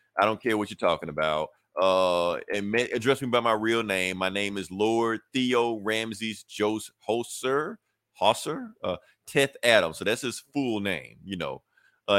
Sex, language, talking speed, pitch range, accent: male, English, 175 wpm, 100-125 Hz, American